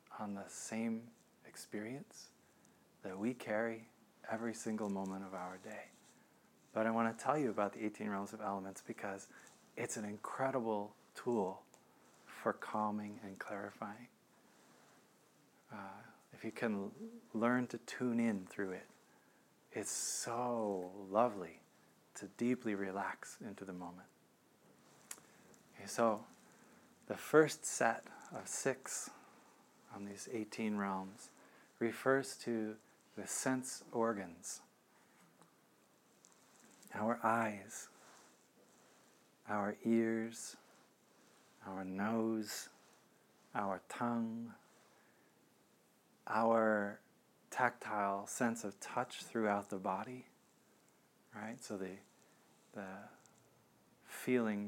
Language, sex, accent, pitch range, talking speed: English, male, American, 100-115 Hz, 95 wpm